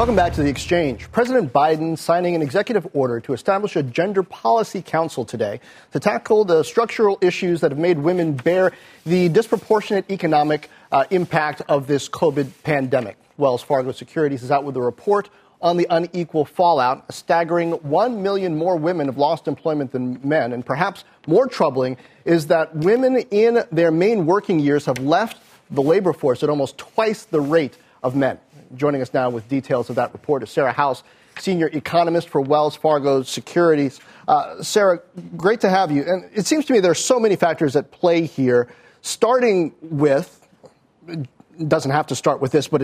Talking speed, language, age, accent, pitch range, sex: 180 wpm, English, 40-59, American, 145-195 Hz, male